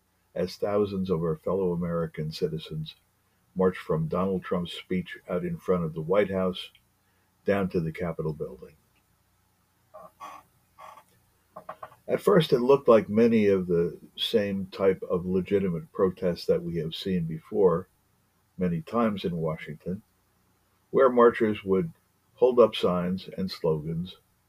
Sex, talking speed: male, 130 wpm